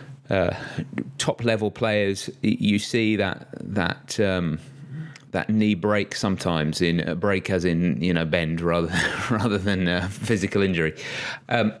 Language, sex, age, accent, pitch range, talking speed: English, male, 30-49, British, 85-120 Hz, 135 wpm